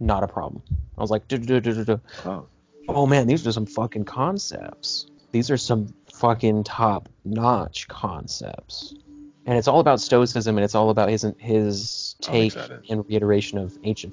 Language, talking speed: English, 145 wpm